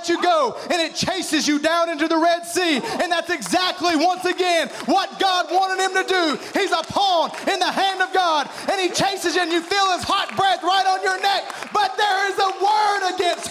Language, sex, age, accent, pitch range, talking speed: English, male, 30-49, American, 330-380 Hz, 220 wpm